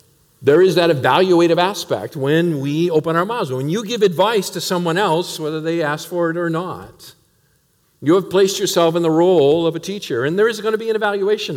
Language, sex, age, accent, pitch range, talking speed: English, male, 50-69, American, 145-185 Hz, 220 wpm